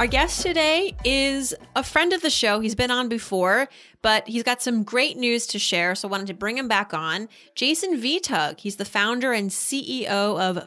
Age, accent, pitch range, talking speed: 30-49, American, 180-235 Hz, 210 wpm